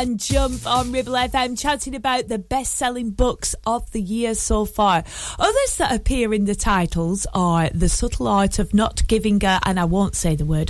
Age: 30-49